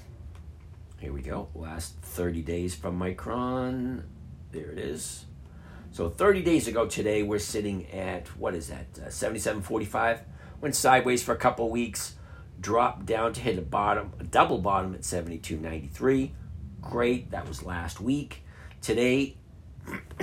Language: English